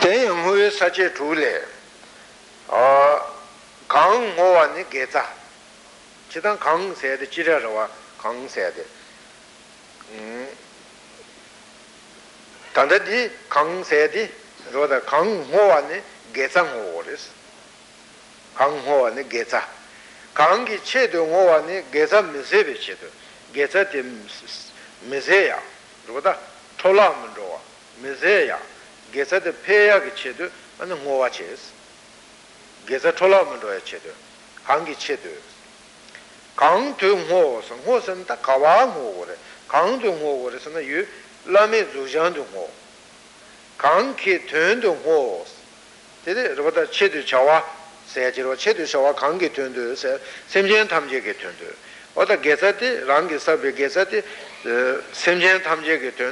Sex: male